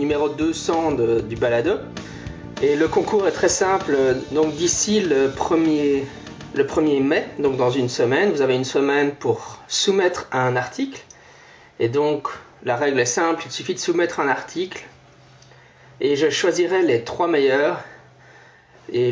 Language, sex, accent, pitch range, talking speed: French, male, French, 130-200 Hz, 155 wpm